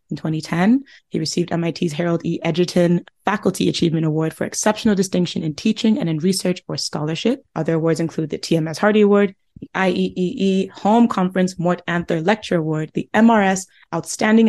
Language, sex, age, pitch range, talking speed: English, female, 20-39, 165-200 Hz, 160 wpm